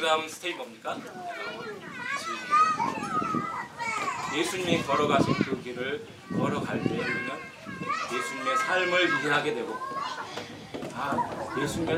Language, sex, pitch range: Korean, male, 165-280 Hz